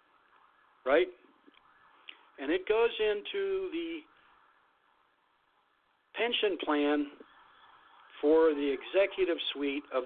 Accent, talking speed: American, 80 wpm